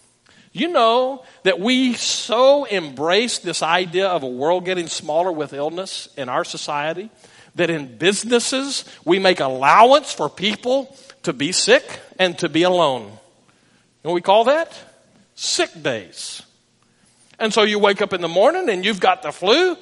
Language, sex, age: English, male, 50-69